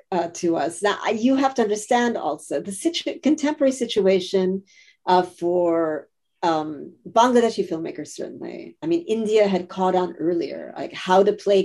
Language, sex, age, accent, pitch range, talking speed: Bengali, female, 40-59, American, 170-225 Hz, 160 wpm